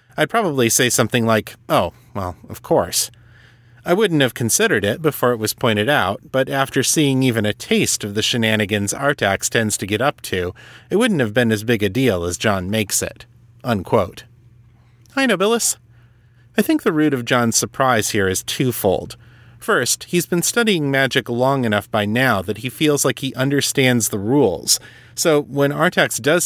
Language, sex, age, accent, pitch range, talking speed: English, male, 30-49, American, 110-140 Hz, 180 wpm